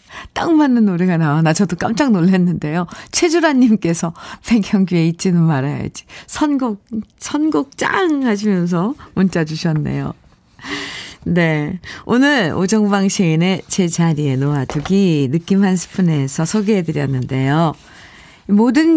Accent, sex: native, female